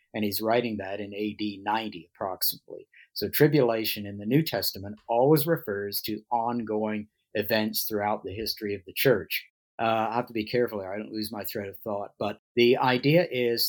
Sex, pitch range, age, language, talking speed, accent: male, 110-130 Hz, 50-69, English, 185 wpm, American